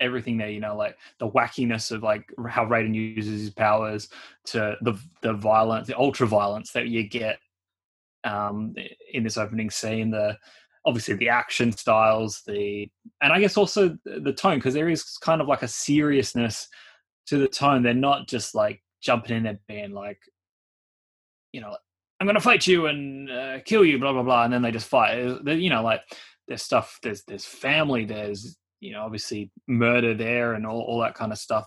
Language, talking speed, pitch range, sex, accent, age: English, 190 wpm, 110-135 Hz, male, Australian, 20-39